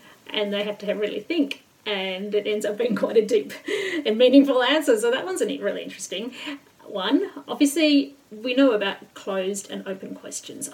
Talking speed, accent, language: 180 wpm, Australian, English